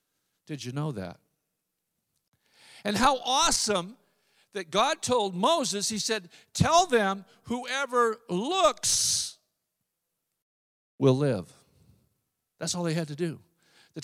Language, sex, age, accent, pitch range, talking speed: English, male, 50-69, American, 130-180 Hz, 110 wpm